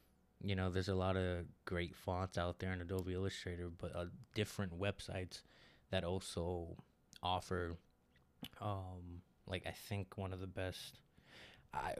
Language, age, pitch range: English, 20-39, 90-100 Hz